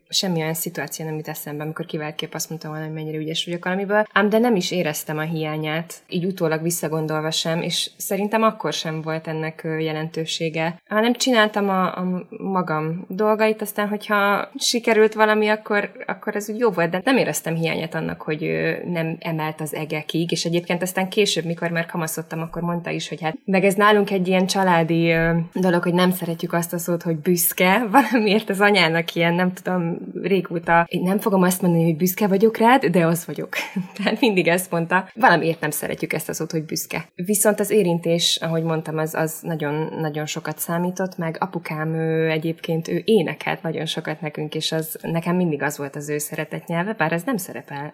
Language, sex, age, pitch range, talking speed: Hungarian, female, 20-39, 160-195 Hz, 185 wpm